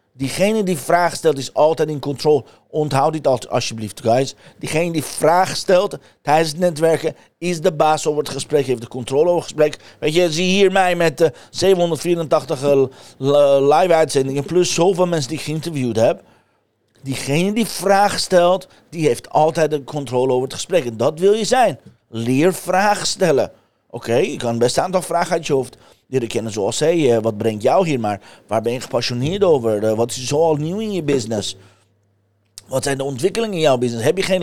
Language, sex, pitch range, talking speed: Dutch, male, 125-180 Hz, 195 wpm